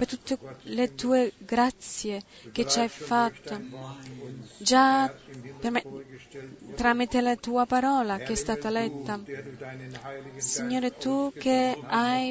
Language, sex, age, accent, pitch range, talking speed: Italian, female, 20-39, native, 195-260 Hz, 105 wpm